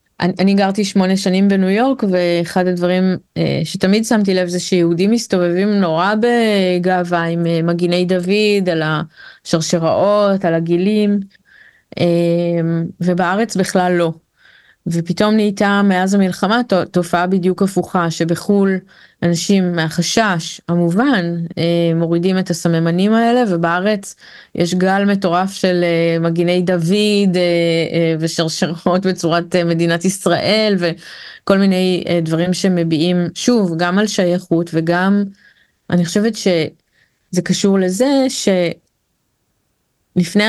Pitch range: 170-200 Hz